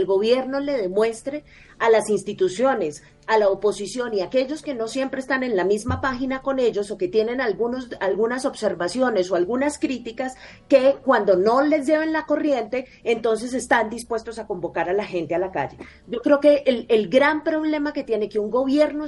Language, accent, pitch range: Spanish, Colombian, 220-280 Hz